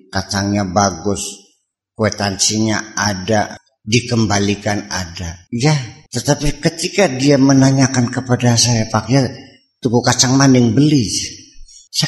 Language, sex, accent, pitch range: Indonesian, male, native, 100-140 Hz